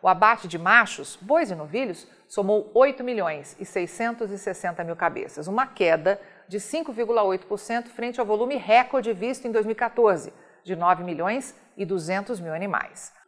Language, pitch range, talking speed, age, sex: Portuguese, 190-245 Hz, 145 wpm, 50-69, female